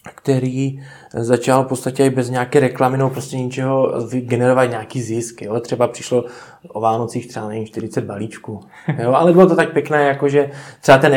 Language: Czech